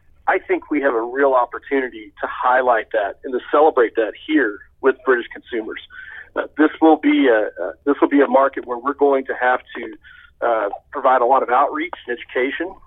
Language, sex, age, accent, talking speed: English, male, 40-59, American, 200 wpm